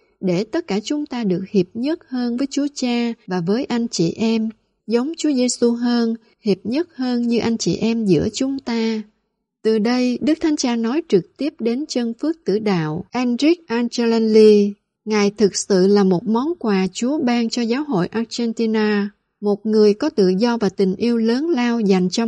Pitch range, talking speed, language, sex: 195-245 Hz, 190 wpm, Vietnamese, female